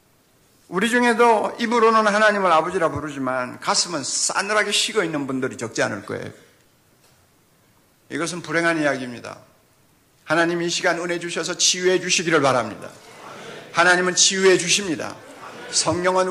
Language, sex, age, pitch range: Korean, male, 50-69, 140-200 Hz